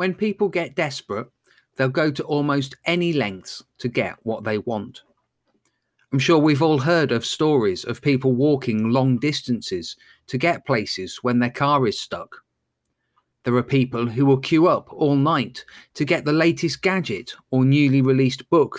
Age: 30-49